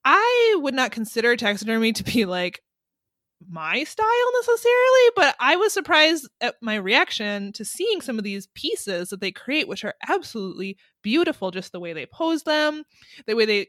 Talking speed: 175 wpm